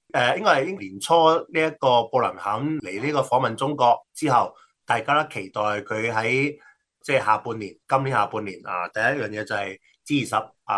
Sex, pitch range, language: male, 105-135 Hz, Chinese